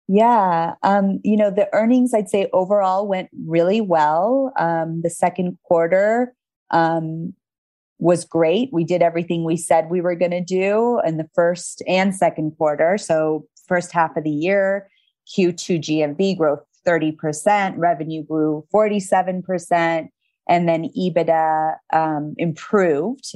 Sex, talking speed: female, 135 wpm